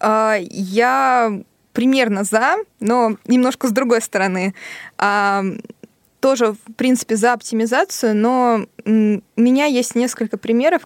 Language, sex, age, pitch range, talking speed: Russian, female, 20-39, 195-230 Hz, 105 wpm